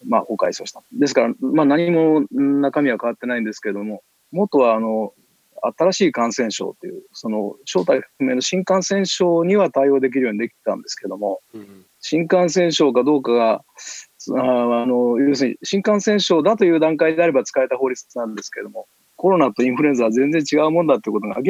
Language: Japanese